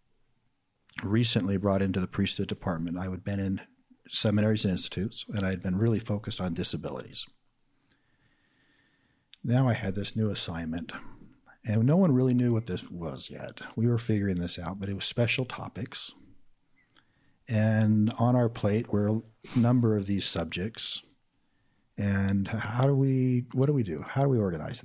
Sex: male